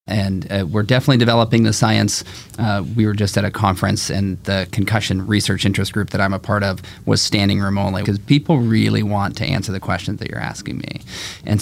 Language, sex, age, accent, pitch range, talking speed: English, male, 30-49, American, 100-115 Hz, 215 wpm